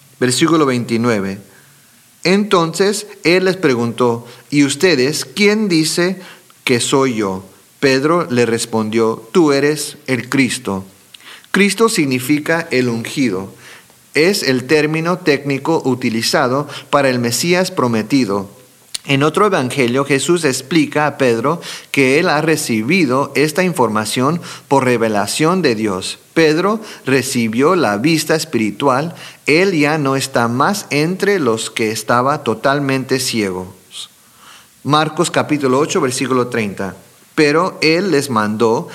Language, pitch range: English, 120-160 Hz